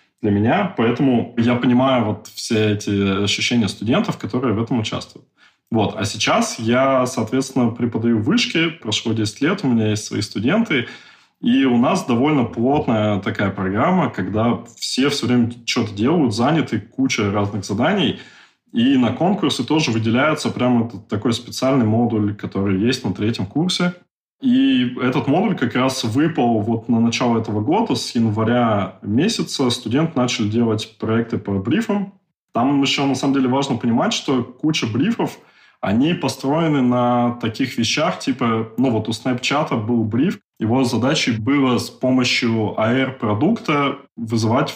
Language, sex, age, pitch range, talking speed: Russian, male, 20-39, 110-140 Hz, 145 wpm